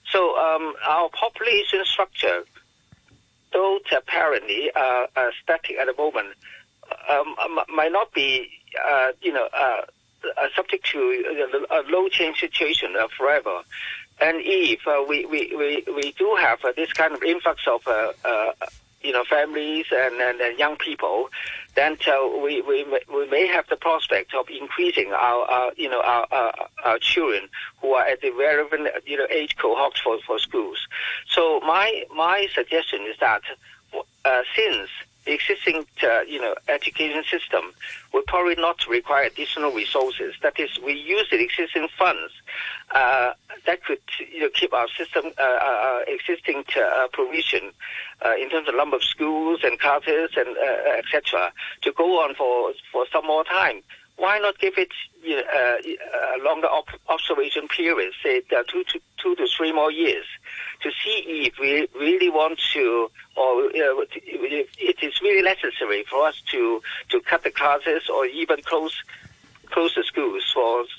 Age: 50-69